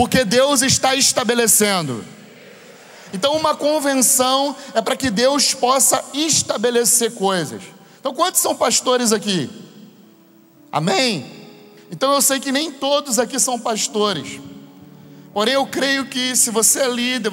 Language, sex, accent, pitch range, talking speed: Portuguese, male, Brazilian, 225-270 Hz, 130 wpm